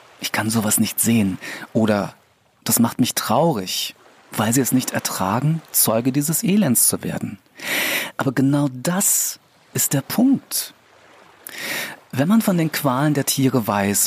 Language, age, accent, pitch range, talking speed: German, 40-59, German, 120-165 Hz, 145 wpm